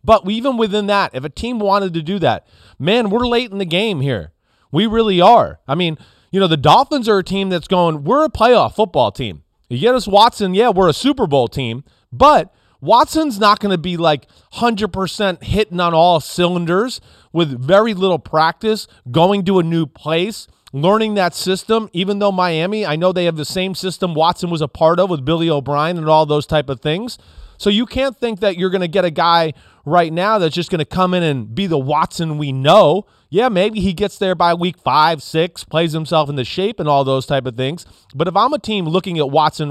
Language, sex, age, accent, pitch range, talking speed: English, male, 30-49, American, 160-225 Hz, 220 wpm